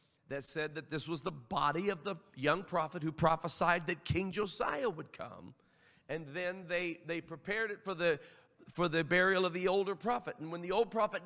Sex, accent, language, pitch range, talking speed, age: male, American, English, 170-255 Hz, 205 wpm, 40-59